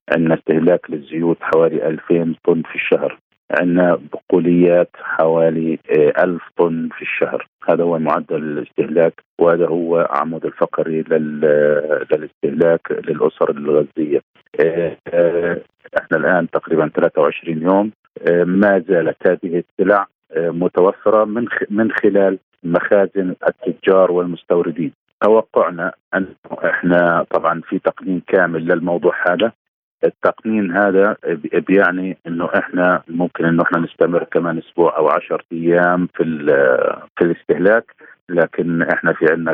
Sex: male